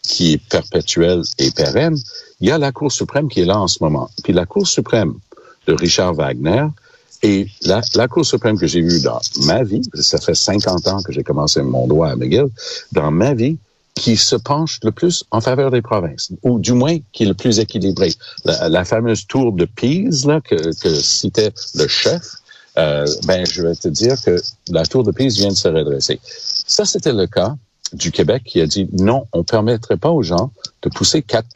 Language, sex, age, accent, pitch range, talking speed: French, male, 60-79, Canadian, 90-140 Hz, 215 wpm